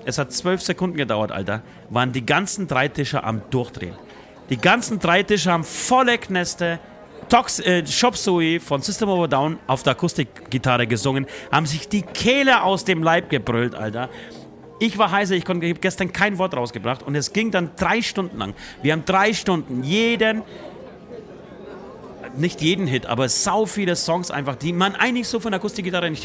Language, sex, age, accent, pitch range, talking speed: German, male, 30-49, German, 130-185 Hz, 180 wpm